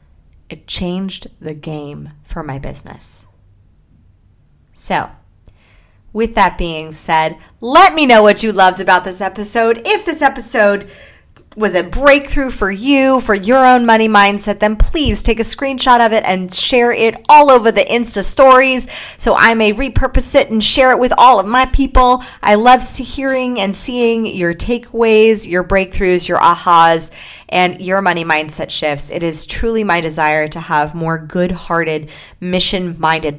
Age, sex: 30-49, female